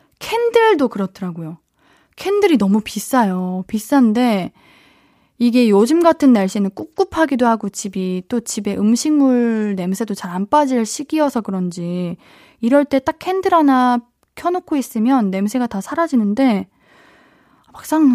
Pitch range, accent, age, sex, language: 205-310 Hz, native, 20-39, female, Korean